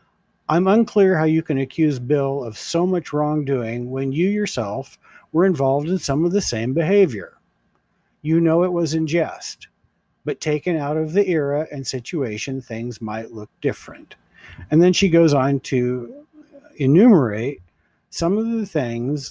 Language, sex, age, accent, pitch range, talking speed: English, male, 50-69, American, 130-170 Hz, 160 wpm